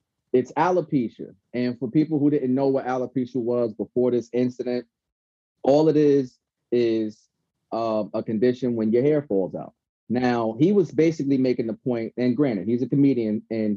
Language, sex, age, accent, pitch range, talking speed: English, male, 30-49, American, 115-140 Hz, 170 wpm